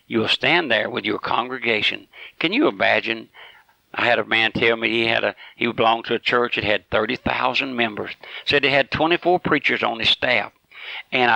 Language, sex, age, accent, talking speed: English, male, 60-79, American, 190 wpm